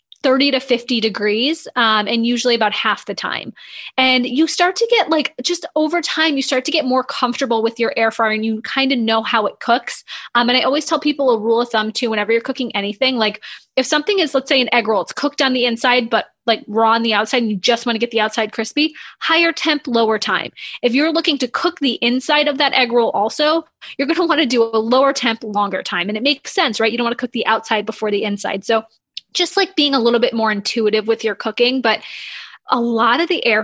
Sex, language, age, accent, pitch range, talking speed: female, English, 20-39, American, 220-270 Hz, 255 wpm